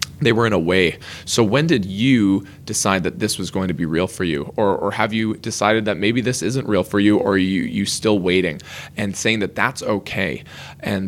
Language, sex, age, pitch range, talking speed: English, male, 20-39, 100-120 Hz, 235 wpm